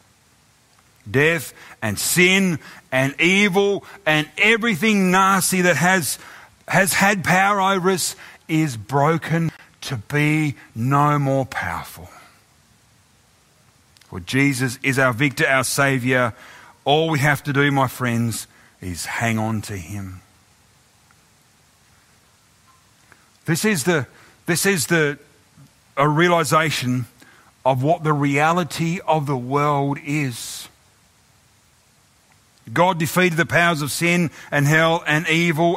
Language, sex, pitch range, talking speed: English, male, 115-160 Hz, 110 wpm